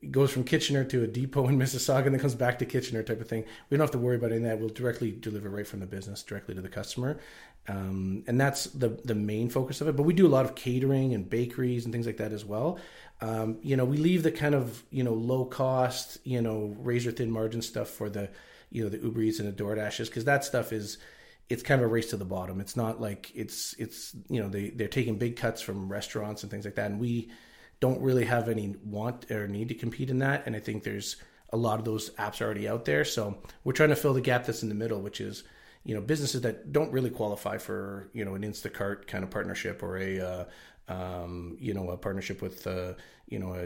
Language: English